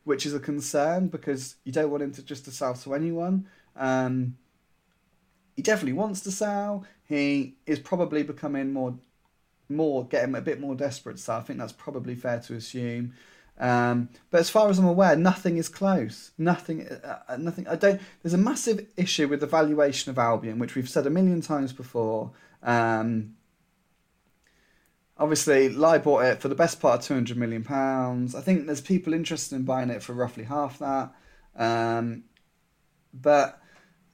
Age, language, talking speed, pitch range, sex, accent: 30-49, English, 175 wpm, 125-170 Hz, male, British